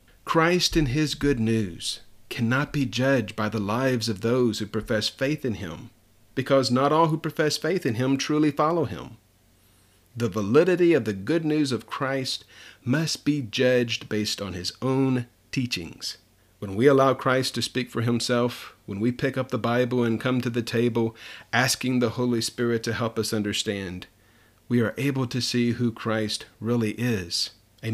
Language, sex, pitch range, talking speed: English, male, 110-140 Hz, 175 wpm